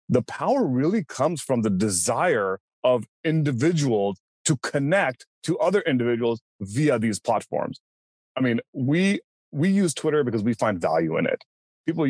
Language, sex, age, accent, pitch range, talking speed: English, male, 30-49, American, 110-155 Hz, 150 wpm